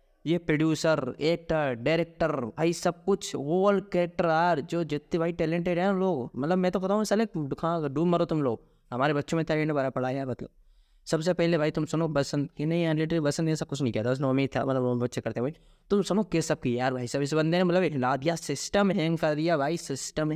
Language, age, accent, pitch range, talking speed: Hindi, 20-39, native, 140-170 Hz, 220 wpm